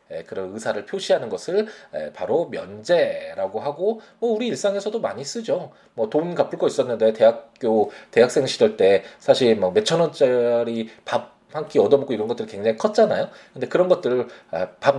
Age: 20-39